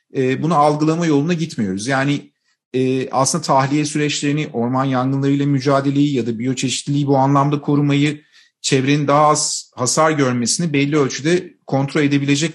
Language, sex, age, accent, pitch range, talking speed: Turkish, male, 40-59, native, 130-150 Hz, 135 wpm